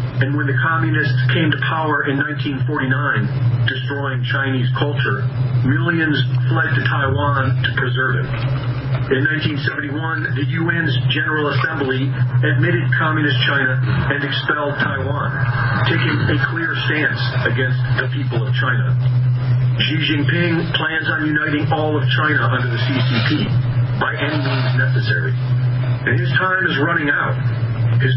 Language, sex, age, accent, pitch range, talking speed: English, male, 40-59, American, 125-145 Hz, 130 wpm